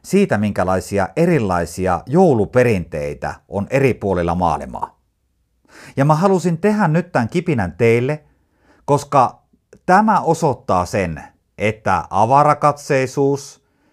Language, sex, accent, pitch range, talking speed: Finnish, male, native, 95-145 Hz, 95 wpm